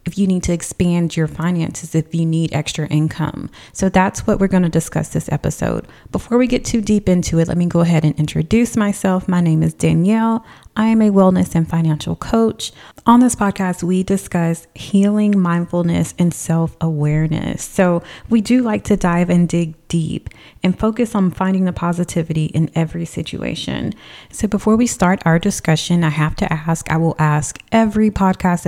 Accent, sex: American, female